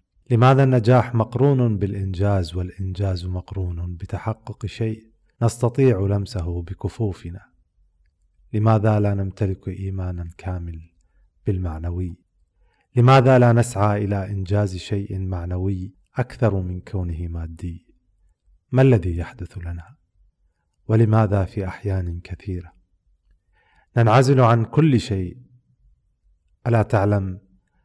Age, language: 40-59, Arabic